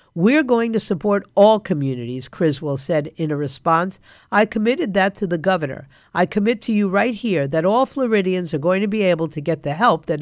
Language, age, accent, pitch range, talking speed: English, 50-69, American, 160-215 Hz, 210 wpm